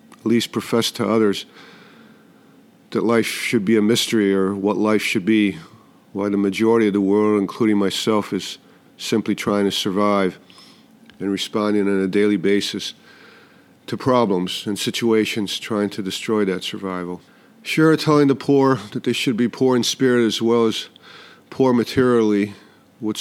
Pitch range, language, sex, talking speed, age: 105-125 Hz, English, male, 160 wpm, 50-69